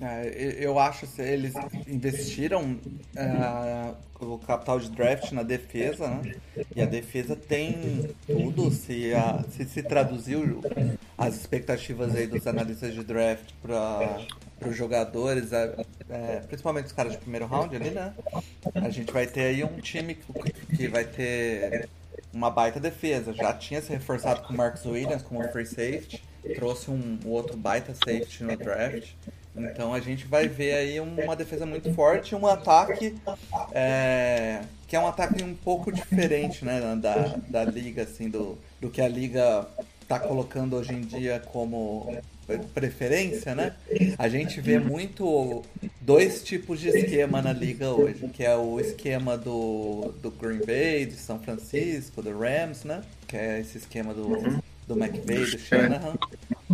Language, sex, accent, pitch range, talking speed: Portuguese, male, Brazilian, 115-145 Hz, 160 wpm